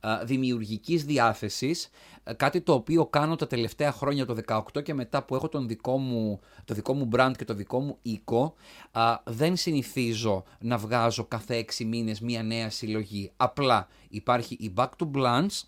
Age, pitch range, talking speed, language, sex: 30-49, 115-155 Hz, 165 wpm, Greek, male